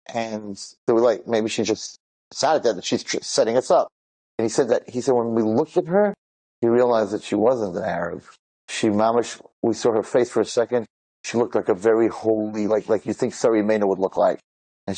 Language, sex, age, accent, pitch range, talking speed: English, male, 30-49, American, 105-145 Hz, 225 wpm